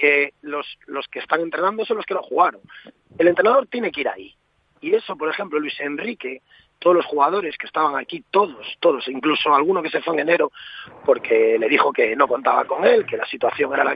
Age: 40-59